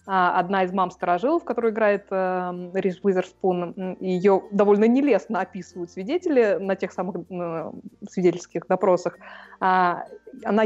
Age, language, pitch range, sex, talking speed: 20-39, Russian, 185-240 Hz, female, 120 wpm